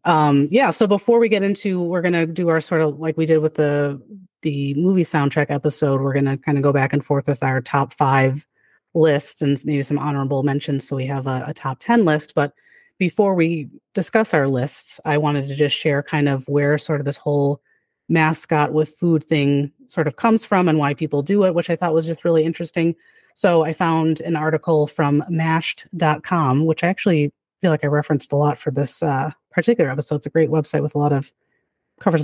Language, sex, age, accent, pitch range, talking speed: English, female, 30-49, American, 145-175 Hz, 220 wpm